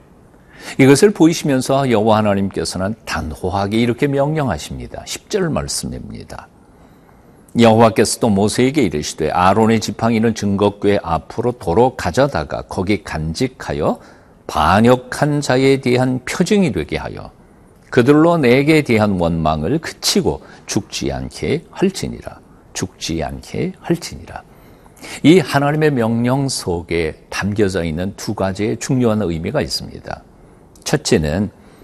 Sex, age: male, 50-69